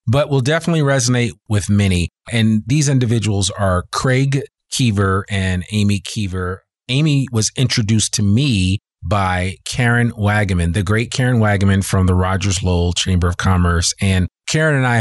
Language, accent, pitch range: English, American, 100-125 Hz